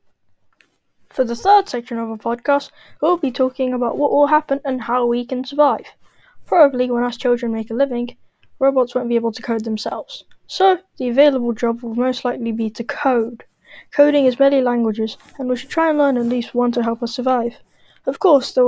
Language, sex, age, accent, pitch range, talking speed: English, female, 10-29, British, 240-280 Hz, 200 wpm